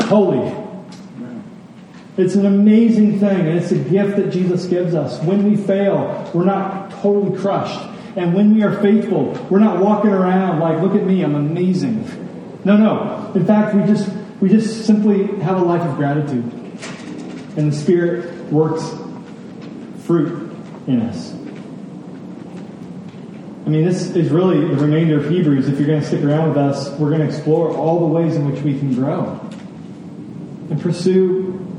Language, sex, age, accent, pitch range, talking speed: English, male, 40-59, American, 160-200 Hz, 160 wpm